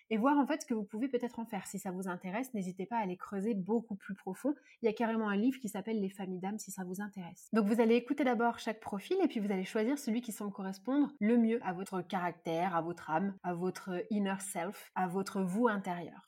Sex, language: female, French